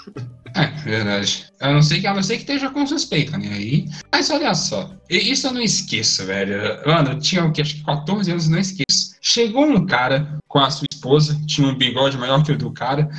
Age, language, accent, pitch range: 10-29, Portuguese, Brazilian, 150-235 Hz